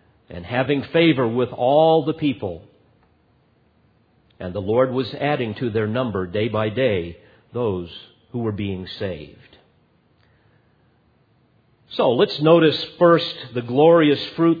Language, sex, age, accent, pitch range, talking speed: English, male, 50-69, American, 115-155 Hz, 125 wpm